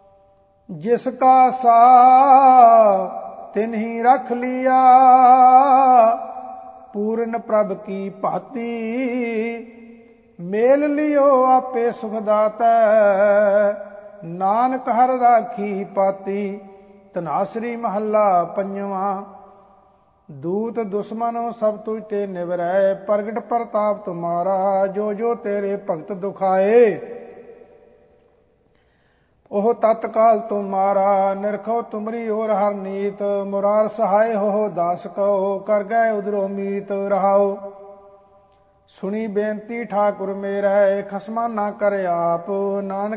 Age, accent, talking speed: 50-69, Indian, 85 wpm